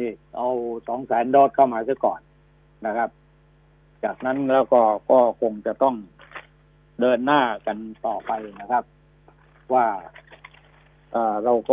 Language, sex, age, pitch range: Thai, male, 60-79, 120-150 Hz